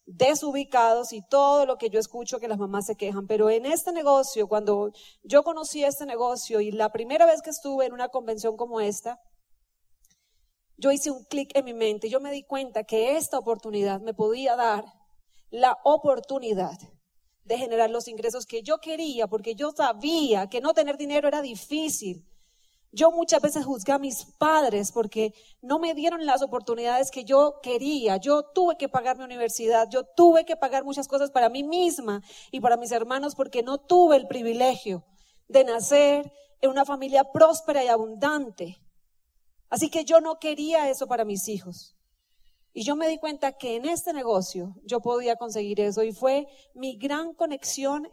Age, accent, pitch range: 30-49, Colombian, 220-290 Hz